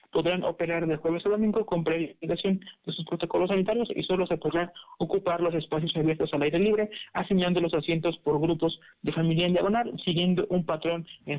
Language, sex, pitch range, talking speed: Spanish, male, 165-195 Hz, 190 wpm